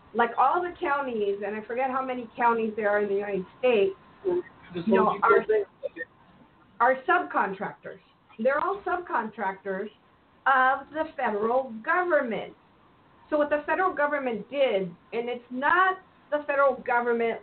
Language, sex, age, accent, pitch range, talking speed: English, female, 50-69, American, 210-295 Hz, 140 wpm